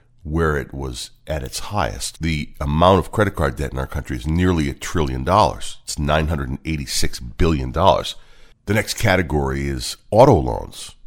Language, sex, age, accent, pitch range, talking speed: English, male, 40-59, American, 70-95 Hz, 165 wpm